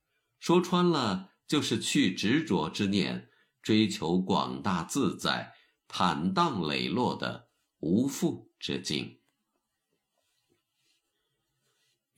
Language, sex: Chinese, male